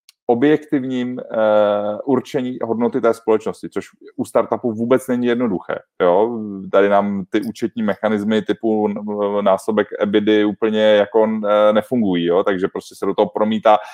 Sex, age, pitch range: male, 30-49, 105-115 Hz